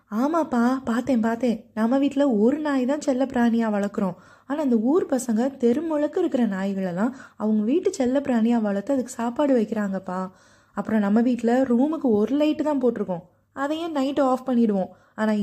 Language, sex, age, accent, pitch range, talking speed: Tamil, female, 20-39, native, 215-275 Hz, 155 wpm